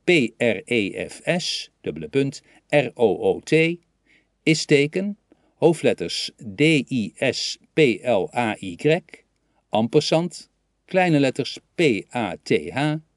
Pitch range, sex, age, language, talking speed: 120-160 Hz, male, 50-69, Dutch, 50 wpm